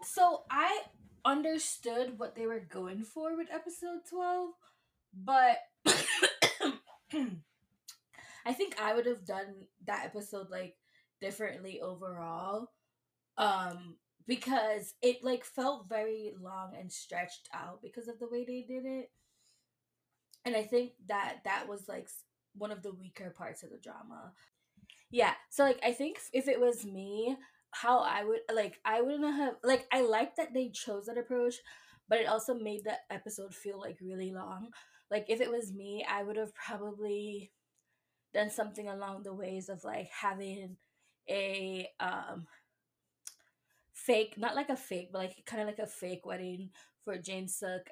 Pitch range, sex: 185-240 Hz, female